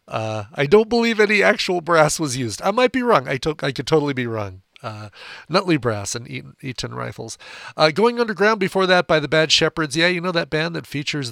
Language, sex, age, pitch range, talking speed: English, male, 40-59, 125-185 Hz, 225 wpm